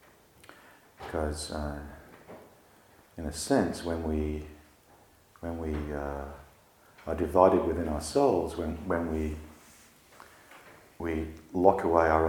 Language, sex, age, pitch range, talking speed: English, male, 40-59, 75-90 Hz, 105 wpm